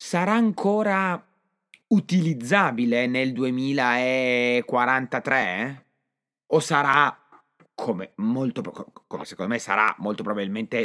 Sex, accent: male, native